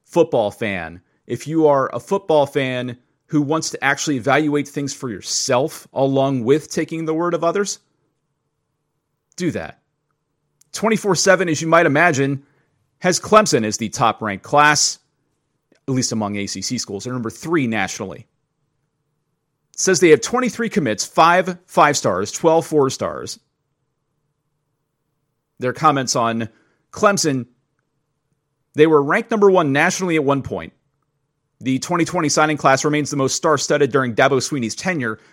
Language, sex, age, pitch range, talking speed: English, male, 30-49, 125-155 Hz, 145 wpm